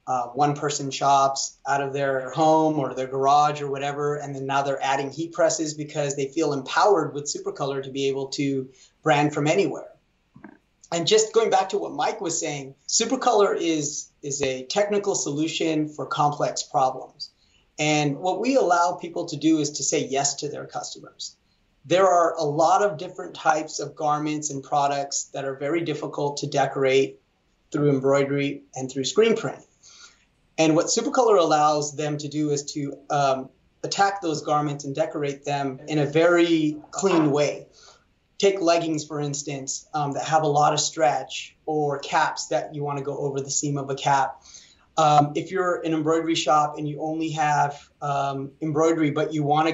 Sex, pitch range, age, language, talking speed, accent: male, 140-160 Hz, 30-49, English, 175 wpm, American